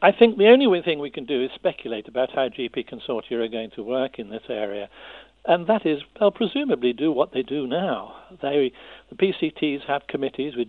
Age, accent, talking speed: 60-79, British, 200 wpm